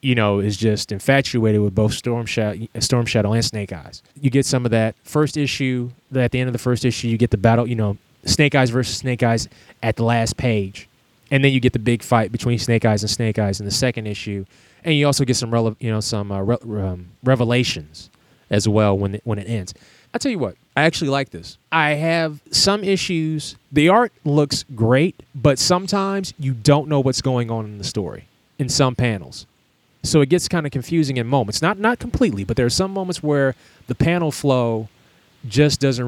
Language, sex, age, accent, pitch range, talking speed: English, male, 20-39, American, 115-145 Hz, 220 wpm